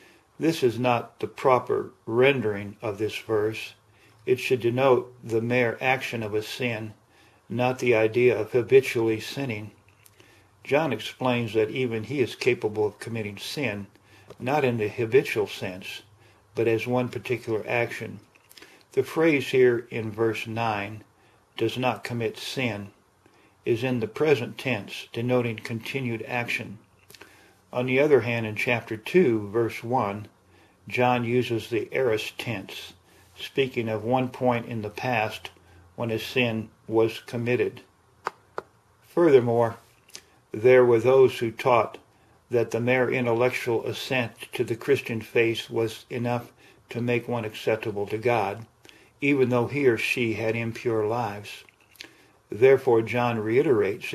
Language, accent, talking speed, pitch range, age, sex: English, American, 135 wpm, 110-125 Hz, 50-69, male